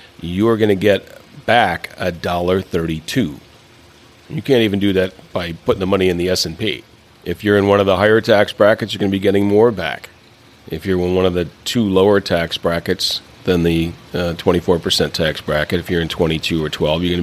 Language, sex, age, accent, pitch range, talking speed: English, male, 40-59, American, 90-115 Hz, 205 wpm